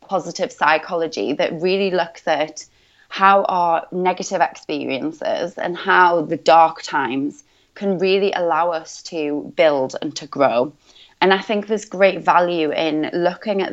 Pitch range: 160-190 Hz